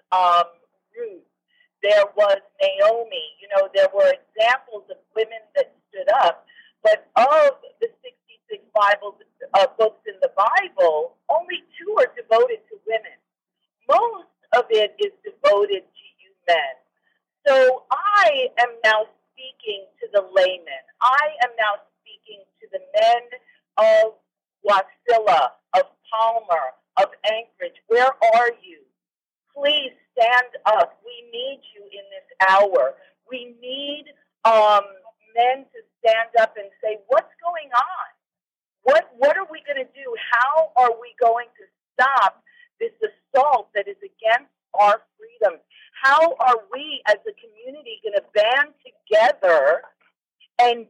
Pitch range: 225-345 Hz